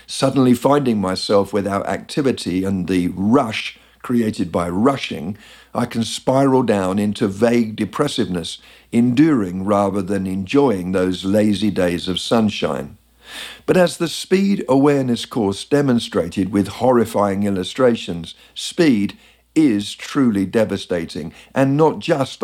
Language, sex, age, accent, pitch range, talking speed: English, male, 50-69, British, 100-135 Hz, 120 wpm